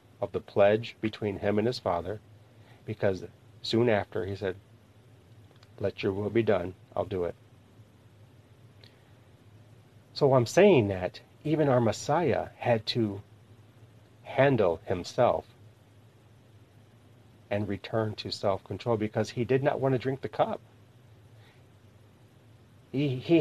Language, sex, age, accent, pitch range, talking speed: English, male, 40-59, American, 110-120 Hz, 120 wpm